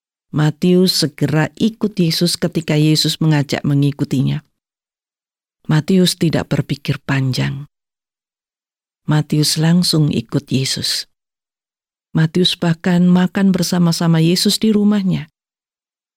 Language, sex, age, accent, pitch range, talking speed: Indonesian, female, 40-59, native, 145-190 Hz, 85 wpm